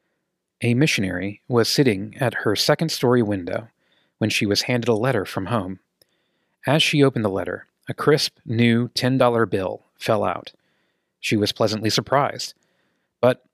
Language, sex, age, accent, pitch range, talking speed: English, male, 30-49, American, 105-135 Hz, 145 wpm